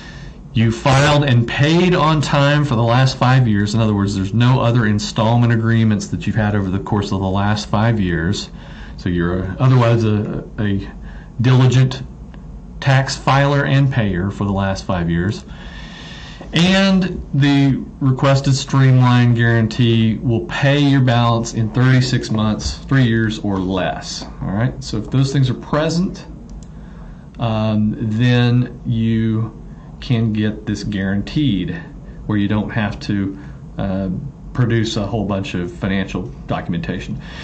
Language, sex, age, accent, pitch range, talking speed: English, male, 40-59, American, 100-130 Hz, 145 wpm